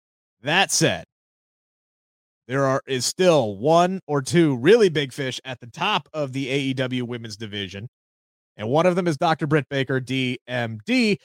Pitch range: 140-190 Hz